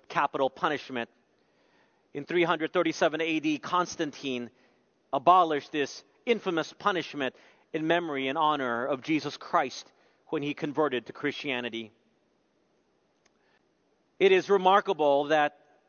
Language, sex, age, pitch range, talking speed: English, male, 40-59, 145-190 Hz, 100 wpm